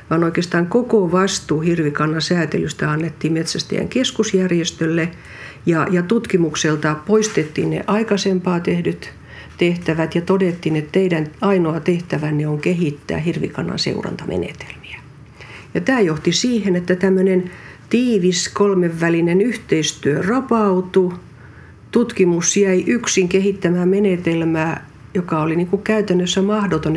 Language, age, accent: Finnish, 60-79, native